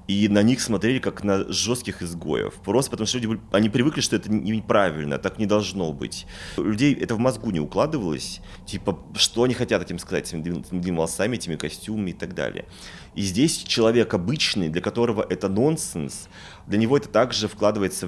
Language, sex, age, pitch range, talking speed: Russian, male, 30-49, 90-120 Hz, 185 wpm